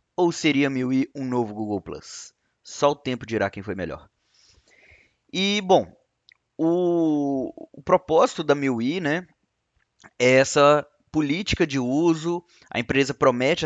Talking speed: 135 wpm